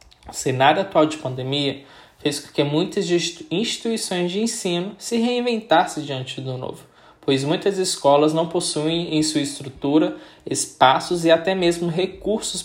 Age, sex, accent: 20-39, male, Brazilian